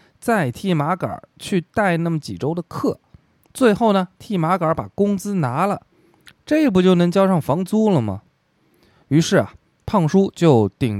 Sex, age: male, 20-39